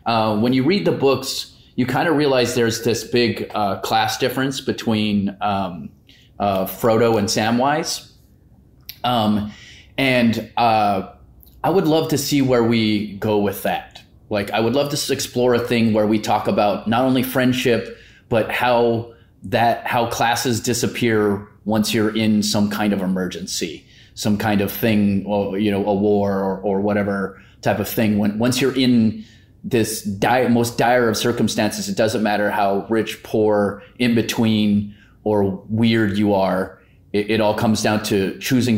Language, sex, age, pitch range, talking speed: English, male, 30-49, 100-120 Hz, 160 wpm